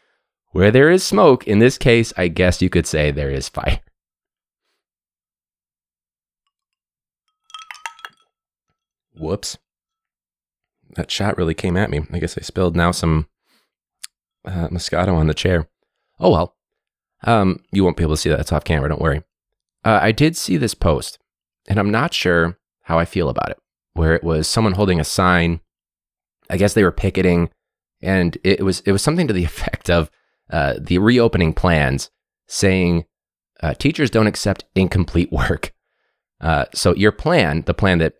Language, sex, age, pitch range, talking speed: English, male, 30-49, 80-125 Hz, 160 wpm